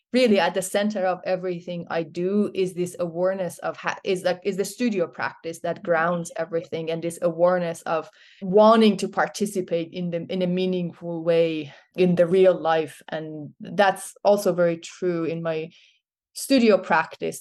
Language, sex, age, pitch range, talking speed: English, female, 20-39, 165-185 Hz, 165 wpm